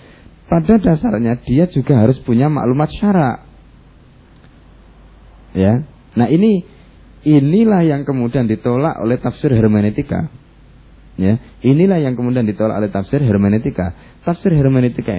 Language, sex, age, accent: Indonesian, male, 20-39, native